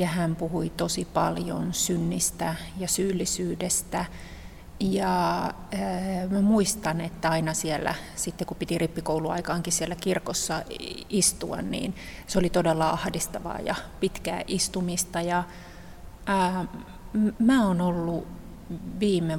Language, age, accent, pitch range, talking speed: Finnish, 30-49, native, 165-185 Hz, 110 wpm